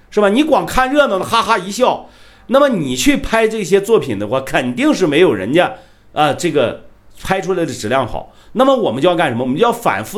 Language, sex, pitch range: Chinese, male, 145-230 Hz